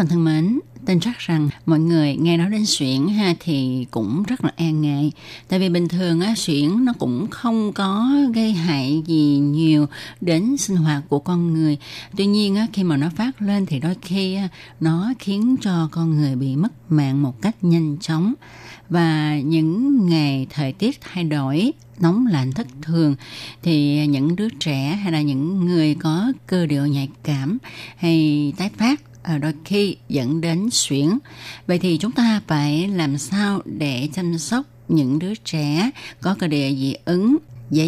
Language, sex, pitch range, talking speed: Vietnamese, female, 145-195 Hz, 175 wpm